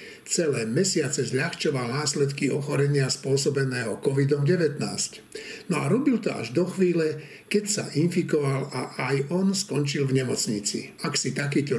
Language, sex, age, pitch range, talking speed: Slovak, male, 60-79, 135-175 Hz, 130 wpm